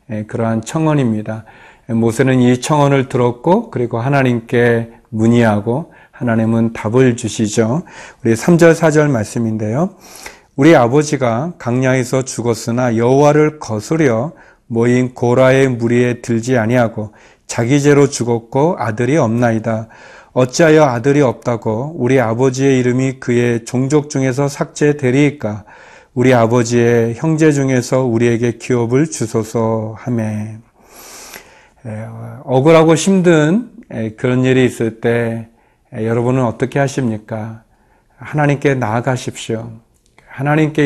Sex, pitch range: male, 115-145 Hz